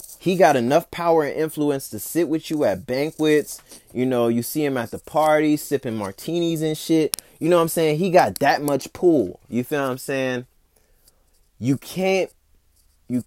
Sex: male